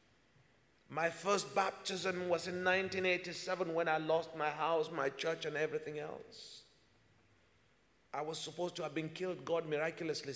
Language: English